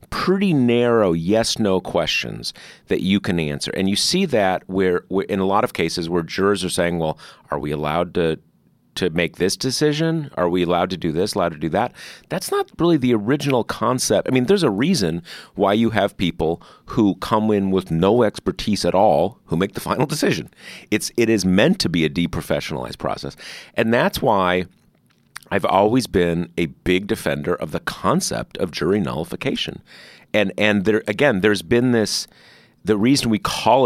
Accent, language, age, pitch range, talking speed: American, English, 40-59, 90-130 Hz, 185 wpm